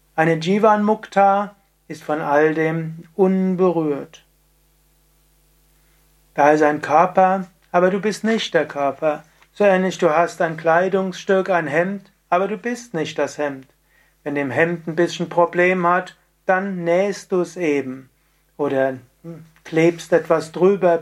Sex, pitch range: male, 155-185 Hz